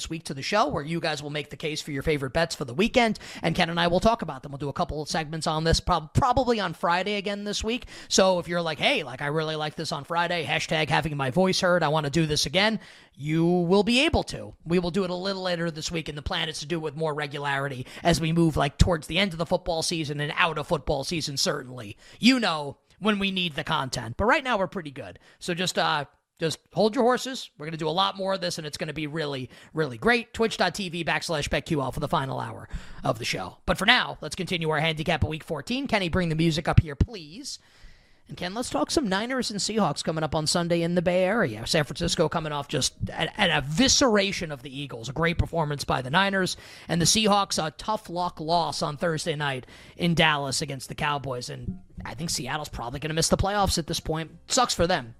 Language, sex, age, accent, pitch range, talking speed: English, male, 30-49, American, 150-185 Hz, 255 wpm